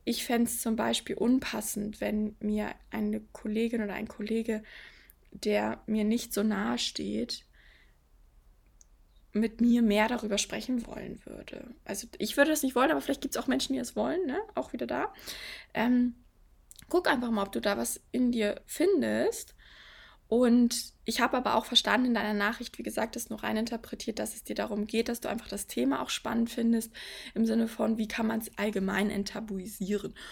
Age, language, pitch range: 20-39, German, 215-245 Hz